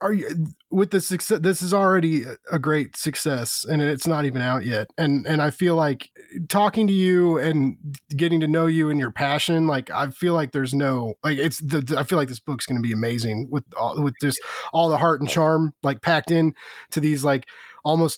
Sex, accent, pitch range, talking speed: male, American, 150-180 Hz, 220 wpm